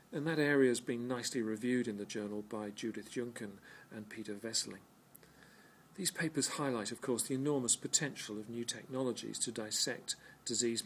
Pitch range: 110-130 Hz